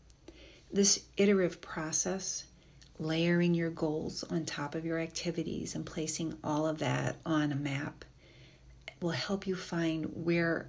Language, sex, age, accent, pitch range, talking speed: English, female, 40-59, American, 150-175 Hz, 135 wpm